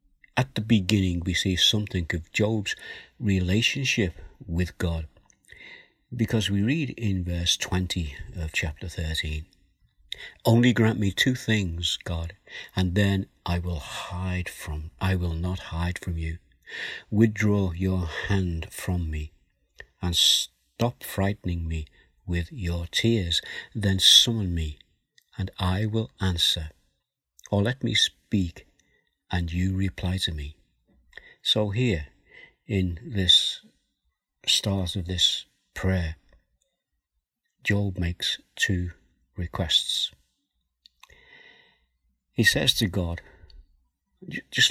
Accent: British